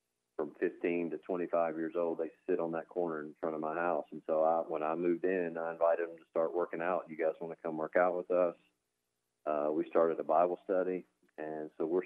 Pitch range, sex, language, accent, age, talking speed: 75-85 Hz, male, English, American, 40-59, 235 wpm